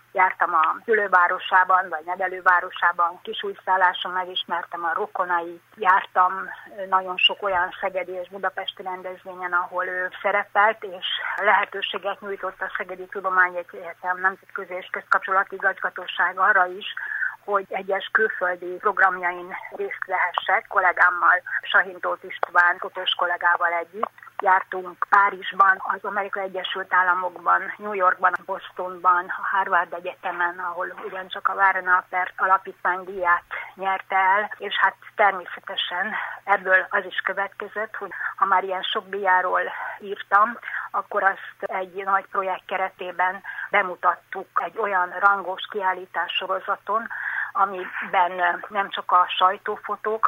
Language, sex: Hungarian, female